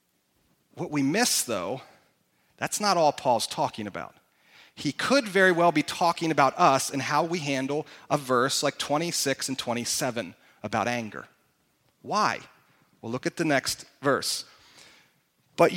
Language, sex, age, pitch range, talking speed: English, male, 40-59, 155-240 Hz, 145 wpm